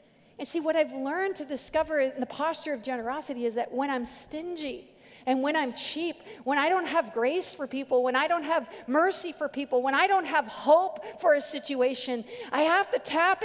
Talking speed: 210 wpm